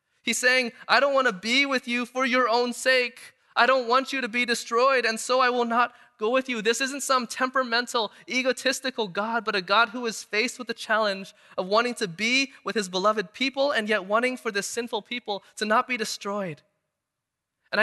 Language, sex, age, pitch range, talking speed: English, male, 20-39, 175-235 Hz, 210 wpm